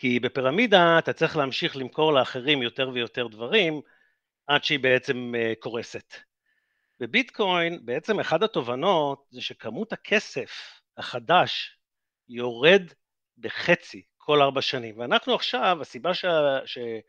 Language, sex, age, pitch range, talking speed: Hebrew, male, 50-69, 125-185 Hz, 110 wpm